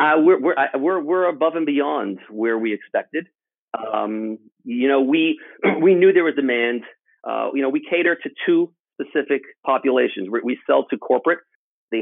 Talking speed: 180 wpm